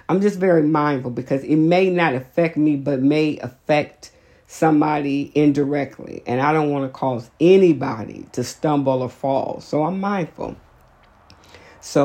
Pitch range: 130-150 Hz